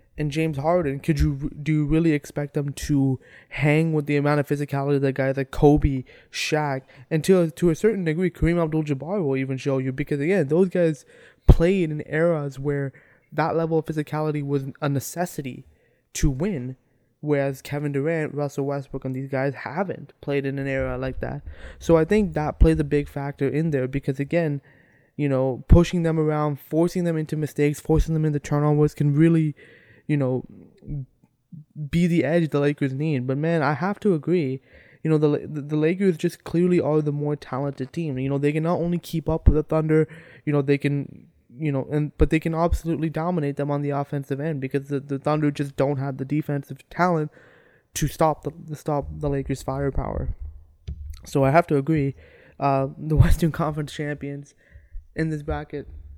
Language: English